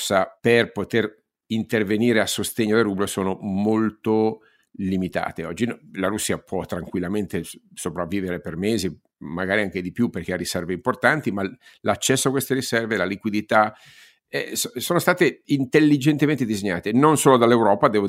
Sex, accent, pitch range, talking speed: male, native, 95-115 Hz, 140 wpm